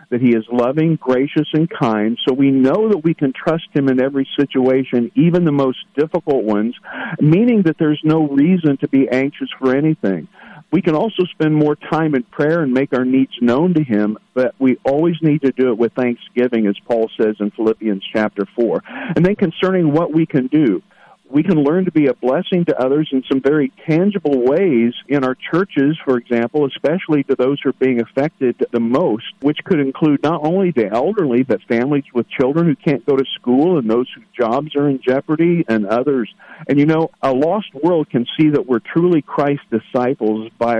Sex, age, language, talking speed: male, 50-69, English, 205 wpm